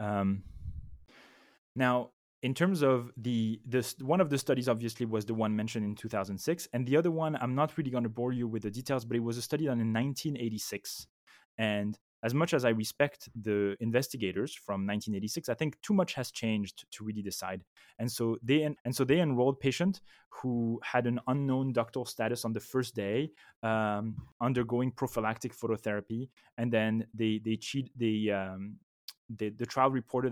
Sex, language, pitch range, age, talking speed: male, English, 110-130 Hz, 20-39, 185 wpm